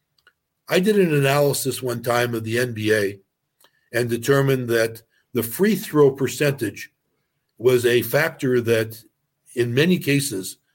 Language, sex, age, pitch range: English, male, 60-79, 110-135 Hz